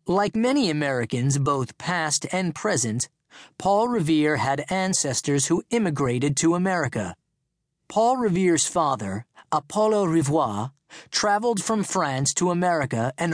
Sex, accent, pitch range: male, American, 140-195 Hz